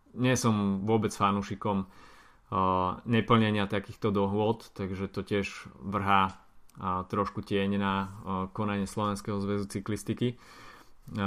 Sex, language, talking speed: male, Slovak, 115 wpm